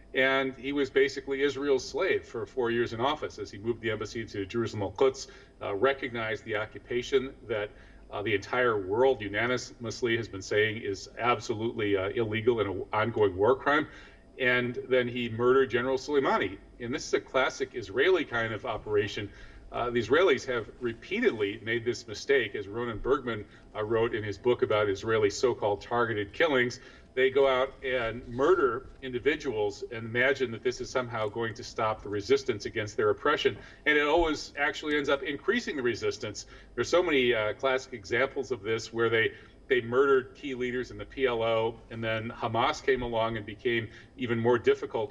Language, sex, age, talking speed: English, male, 40-59, 175 wpm